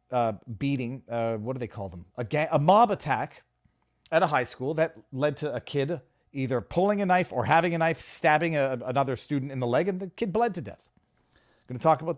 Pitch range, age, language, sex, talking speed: 110-150 Hz, 40-59, English, male, 230 wpm